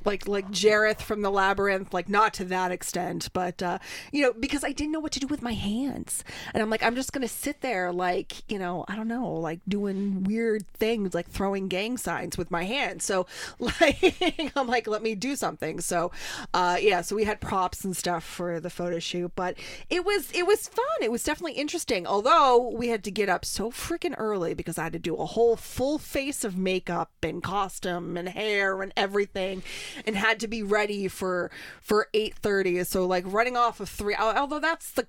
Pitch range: 180-225 Hz